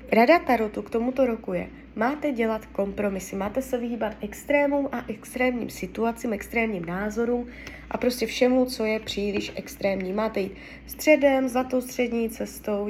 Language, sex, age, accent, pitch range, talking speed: Czech, female, 20-39, native, 210-265 Hz, 145 wpm